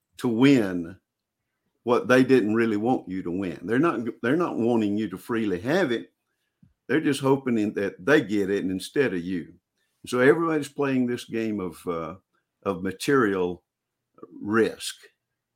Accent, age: American, 50-69